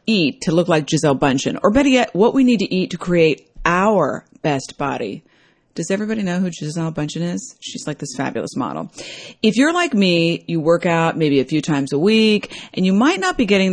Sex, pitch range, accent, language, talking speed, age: female, 155-220 Hz, American, English, 220 wpm, 40-59